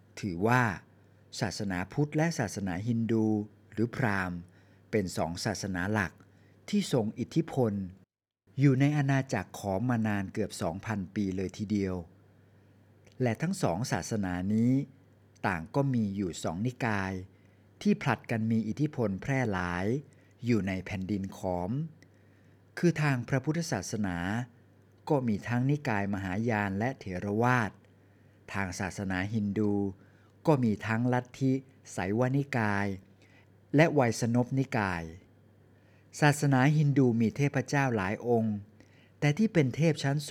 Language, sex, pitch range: Thai, male, 100-125 Hz